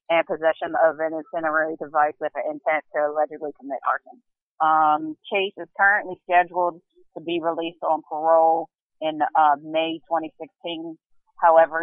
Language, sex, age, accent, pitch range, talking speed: English, female, 30-49, American, 155-175 Hz, 140 wpm